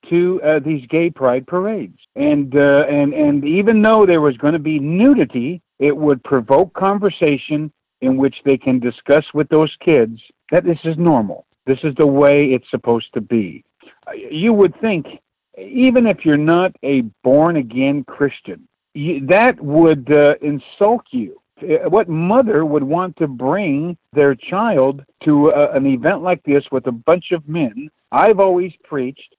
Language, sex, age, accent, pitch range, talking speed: English, male, 60-79, American, 130-175 Hz, 165 wpm